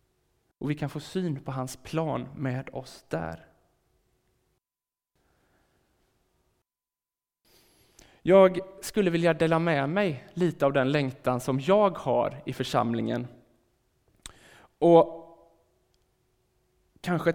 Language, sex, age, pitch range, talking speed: Swedish, male, 20-39, 130-165 Hz, 95 wpm